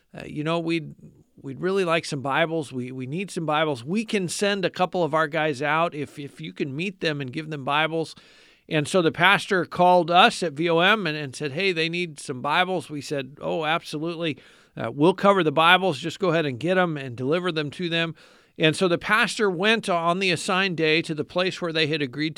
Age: 50-69